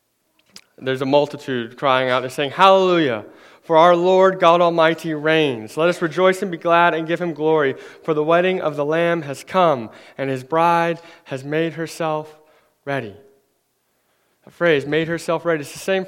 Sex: male